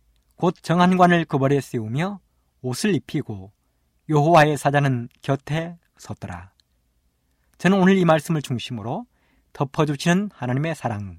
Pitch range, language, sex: 105-165 Hz, Korean, male